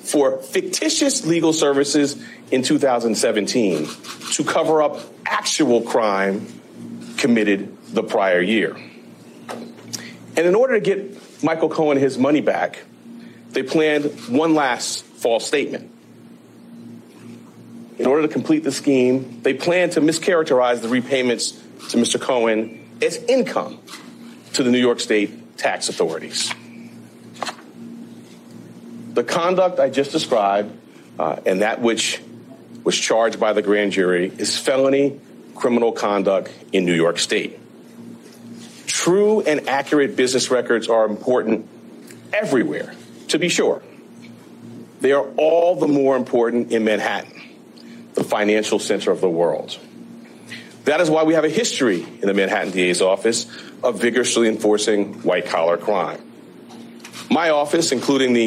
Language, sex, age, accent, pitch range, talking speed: English, male, 40-59, American, 110-160 Hz, 125 wpm